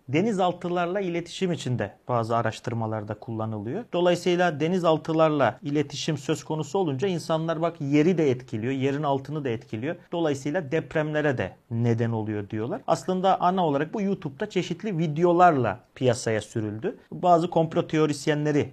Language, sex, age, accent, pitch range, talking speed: Turkish, male, 40-59, native, 120-160 Hz, 125 wpm